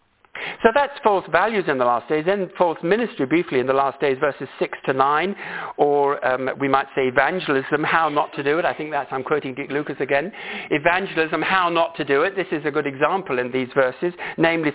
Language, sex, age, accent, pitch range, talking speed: English, male, 50-69, British, 130-175 Hz, 220 wpm